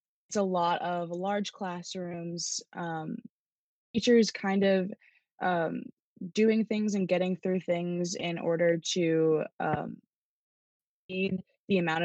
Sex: female